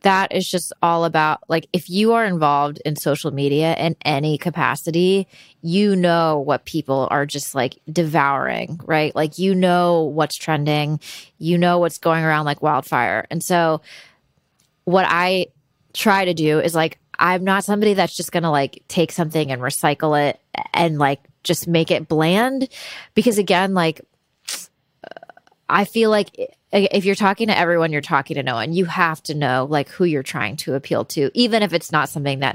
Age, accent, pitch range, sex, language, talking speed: 20-39, American, 150-185 Hz, female, English, 180 wpm